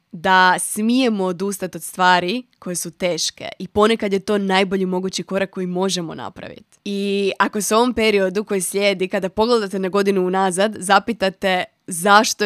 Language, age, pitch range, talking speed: Croatian, 20-39, 185-215 Hz, 160 wpm